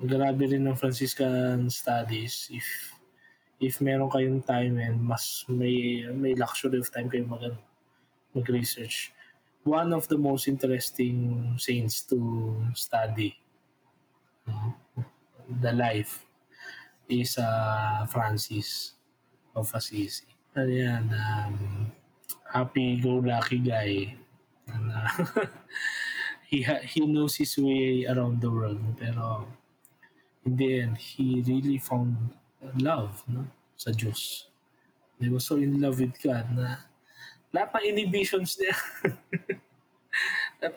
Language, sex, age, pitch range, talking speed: Filipino, male, 20-39, 120-145 Hz, 110 wpm